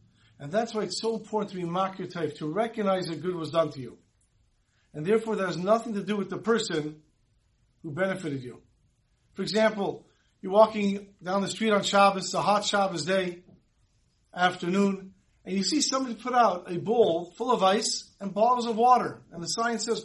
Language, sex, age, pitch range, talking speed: English, male, 50-69, 160-215 Hz, 185 wpm